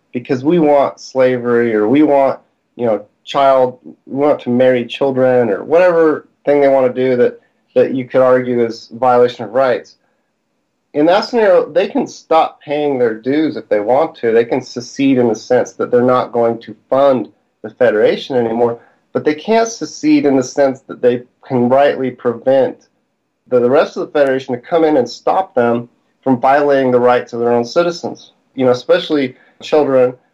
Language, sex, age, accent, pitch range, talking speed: English, male, 40-59, American, 120-145 Hz, 190 wpm